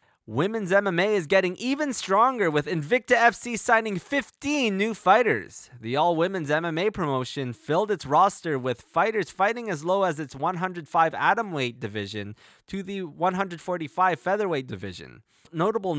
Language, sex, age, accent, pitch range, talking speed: English, male, 20-39, American, 135-200 Hz, 135 wpm